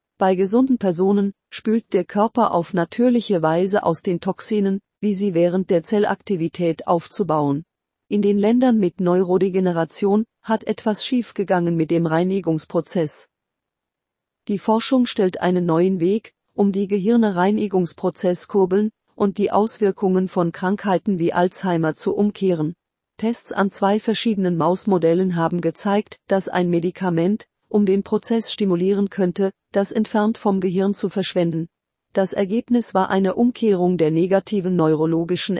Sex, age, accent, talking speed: female, 40-59, German, 130 wpm